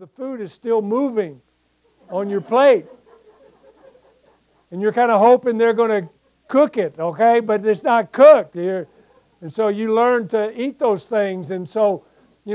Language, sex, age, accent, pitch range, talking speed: English, male, 60-79, American, 170-215 Hz, 165 wpm